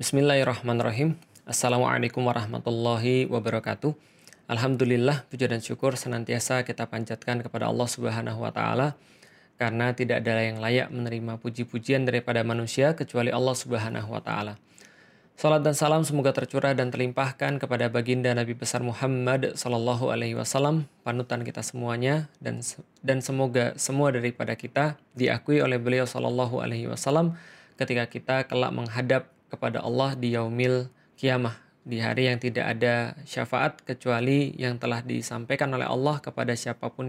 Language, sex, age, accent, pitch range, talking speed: Indonesian, male, 20-39, native, 120-135 Hz, 135 wpm